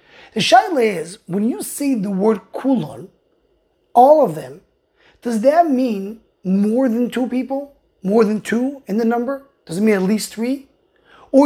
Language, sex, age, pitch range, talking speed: English, male, 30-49, 190-265 Hz, 170 wpm